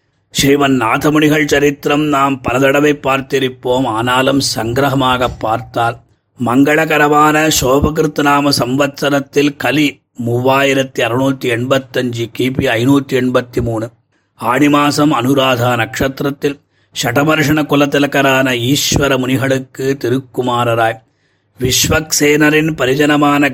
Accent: native